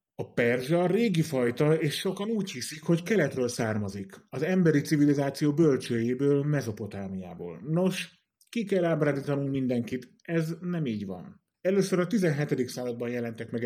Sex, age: male, 30-49